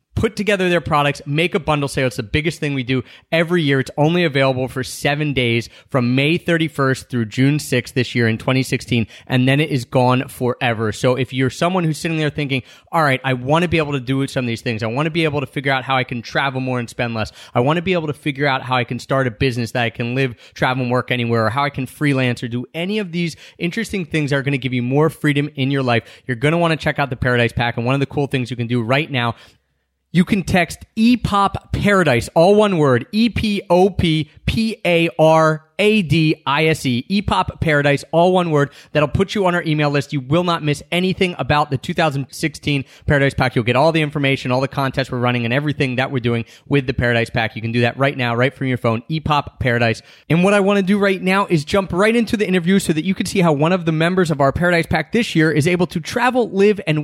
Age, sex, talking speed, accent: 30-49, male, 255 wpm, American